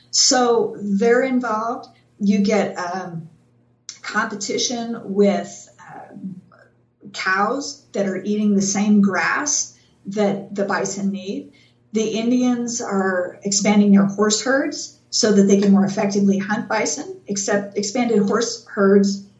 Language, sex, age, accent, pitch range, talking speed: English, female, 50-69, American, 195-220 Hz, 120 wpm